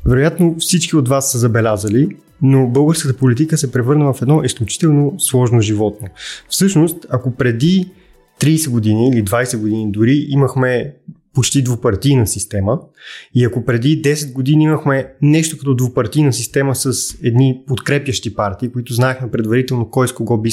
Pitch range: 115-150 Hz